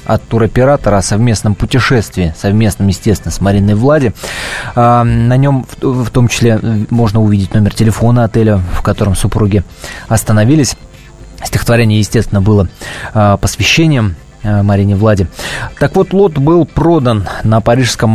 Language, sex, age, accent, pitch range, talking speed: Russian, male, 20-39, native, 105-135 Hz, 120 wpm